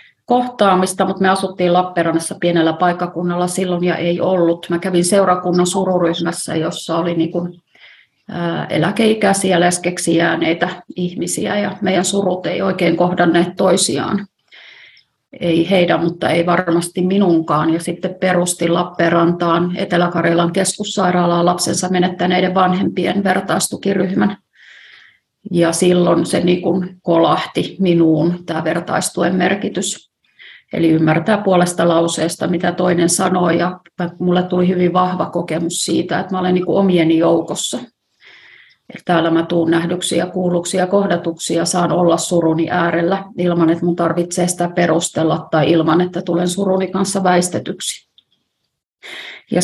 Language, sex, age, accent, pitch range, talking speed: Finnish, female, 30-49, native, 170-185 Hz, 115 wpm